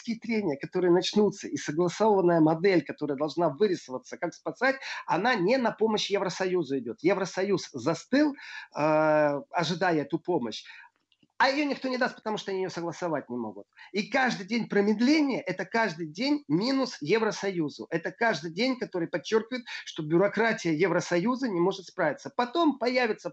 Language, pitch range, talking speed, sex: Russian, 160-215 Hz, 145 wpm, male